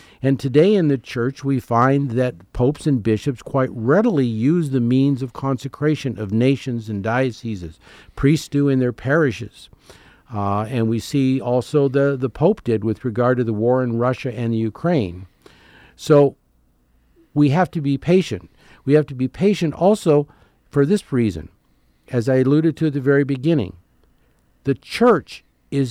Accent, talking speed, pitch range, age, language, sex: American, 165 wpm, 105-140 Hz, 50-69, English, male